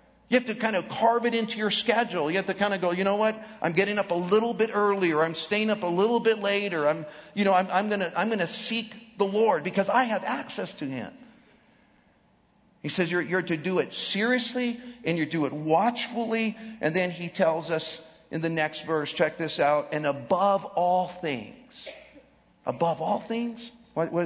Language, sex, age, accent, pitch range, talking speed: English, male, 50-69, American, 165-230 Hz, 215 wpm